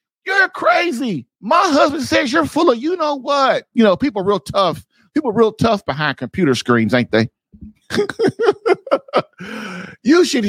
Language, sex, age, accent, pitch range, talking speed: English, male, 50-69, American, 200-300 Hz, 160 wpm